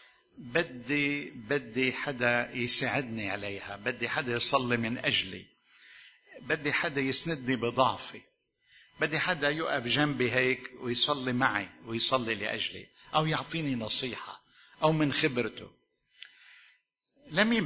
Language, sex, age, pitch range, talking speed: Arabic, male, 60-79, 120-150 Hz, 100 wpm